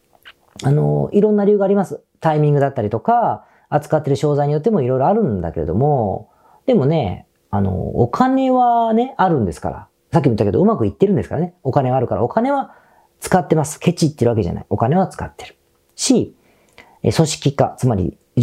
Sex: female